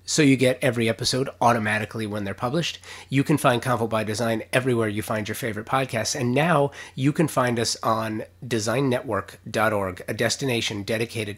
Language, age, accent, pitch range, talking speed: English, 30-49, American, 105-130 Hz, 170 wpm